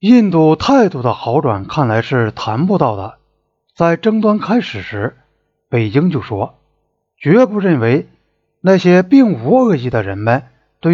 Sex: male